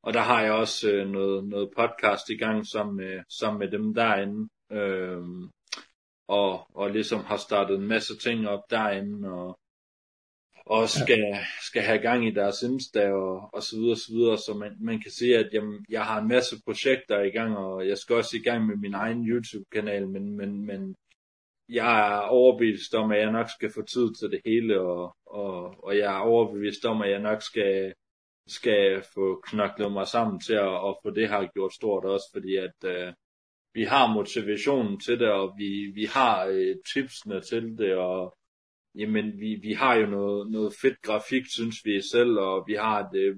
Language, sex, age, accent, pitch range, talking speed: Danish, male, 30-49, native, 100-115 Hz, 195 wpm